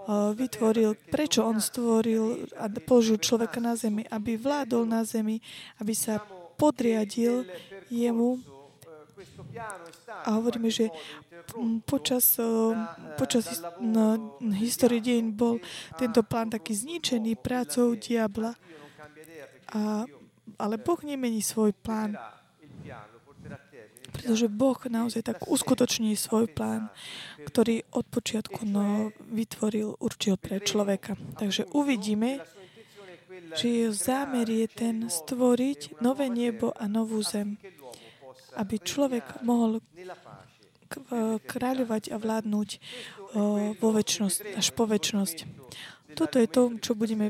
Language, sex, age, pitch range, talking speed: Slovak, female, 20-39, 210-240 Hz, 105 wpm